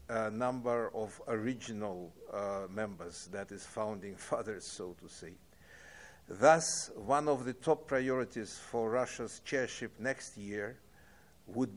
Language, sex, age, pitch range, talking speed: English, male, 60-79, 105-130 Hz, 130 wpm